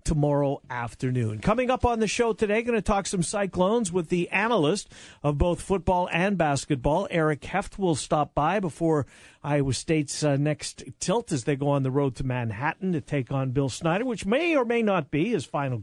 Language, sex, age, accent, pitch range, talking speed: English, male, 50-69, American, 135-180 Hz, 200 wpm